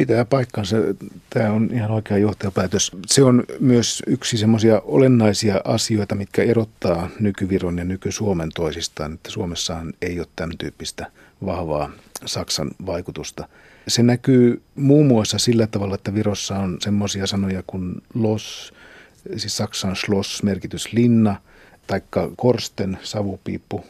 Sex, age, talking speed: male, 50-69, 120 wpm